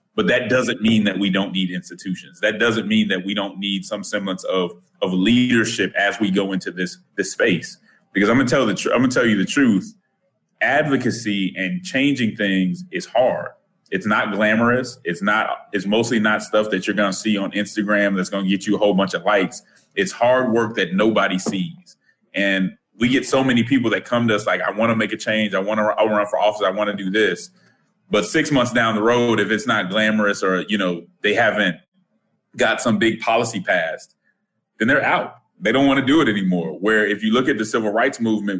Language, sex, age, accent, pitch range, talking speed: English, male, 30-49, American, 100-135 Hz, 235 wpm